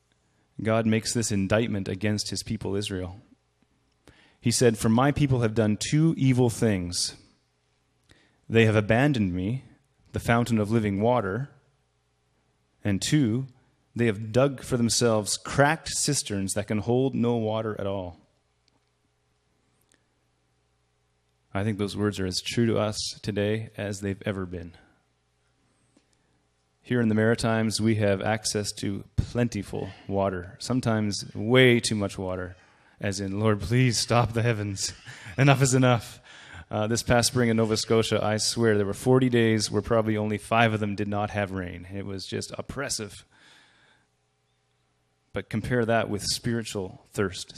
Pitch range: 95-115 Hz